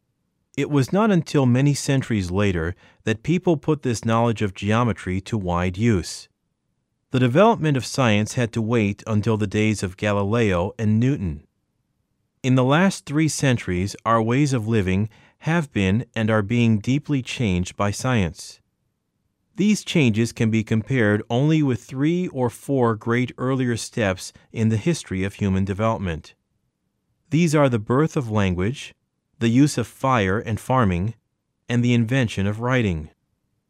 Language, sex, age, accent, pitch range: Korean, male, 40-59, American, 105-135 Hz